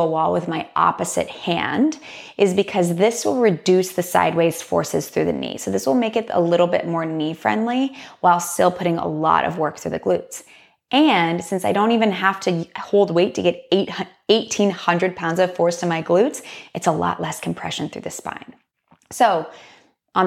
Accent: American